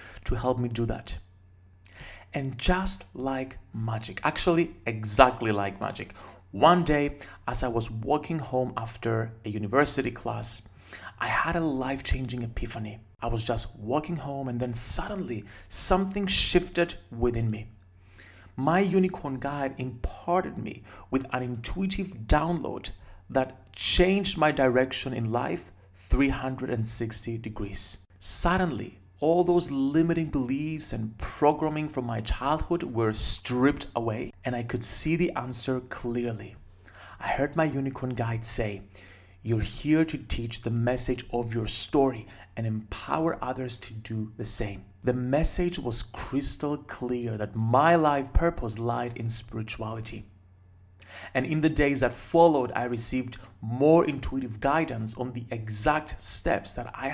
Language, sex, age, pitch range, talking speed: English, male, 40-59, 110-140 Hz, 135 wpm